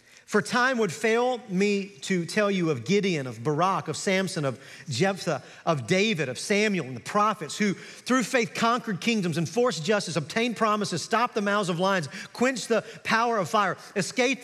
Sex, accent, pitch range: male, American, 195-250 Hz